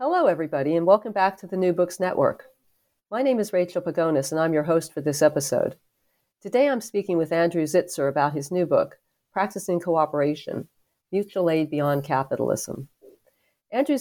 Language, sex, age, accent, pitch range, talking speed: English, female, 40-59, American, 150-195 Hz, 165 wpm